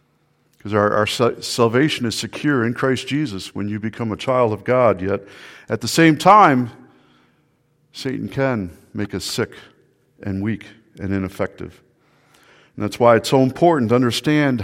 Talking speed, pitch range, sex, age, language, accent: 155 wpm, 110-145 Hz, male, 50-69, English, American